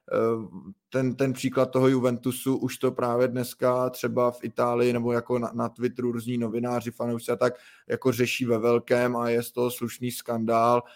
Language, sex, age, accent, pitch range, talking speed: Czech, male, 20-39, native, 120-130 Hz, 165 wpm